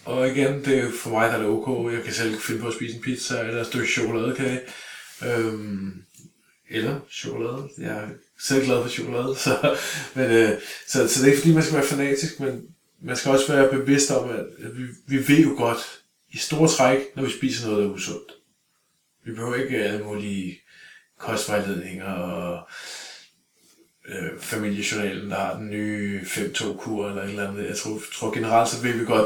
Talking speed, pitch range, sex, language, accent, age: 190 wpm, 105-130 Hz, male, Danish, native, 20-39